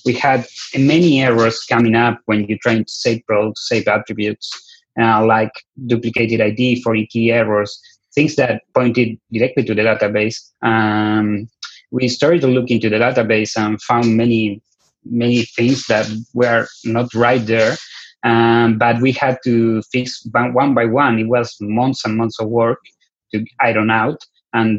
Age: 30-49